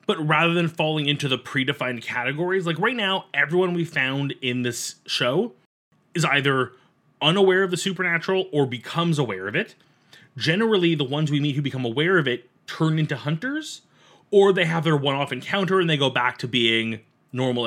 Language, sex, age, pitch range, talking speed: English, male, 30-49, 130-180 Hz, 185 wpm